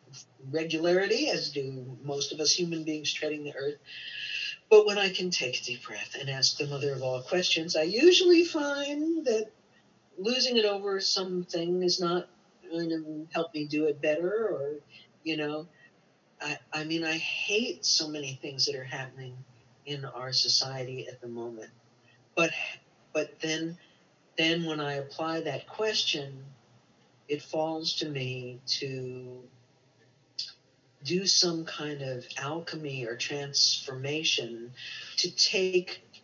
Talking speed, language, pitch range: 140 wpm, English, 135-180 Hz